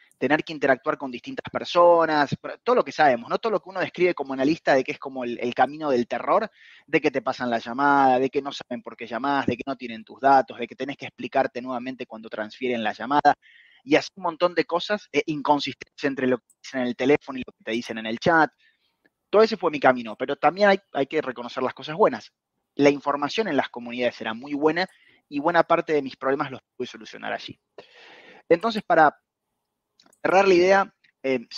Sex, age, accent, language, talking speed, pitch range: male, 20-39, Argentinian, Spanish, 225 wpm, 130-175 Hz